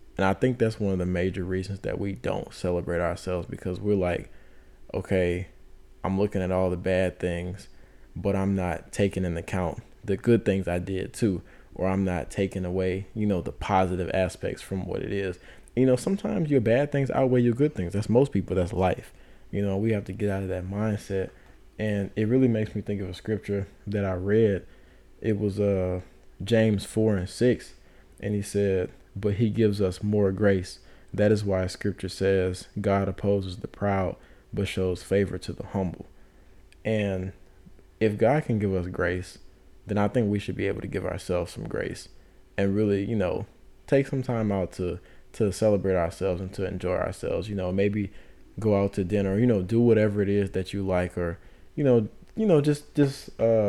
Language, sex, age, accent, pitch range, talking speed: English, male, 20-39, American, 95-105 Hz, 200 wpm